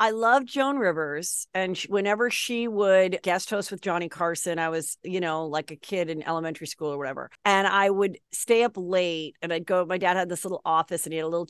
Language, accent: English, American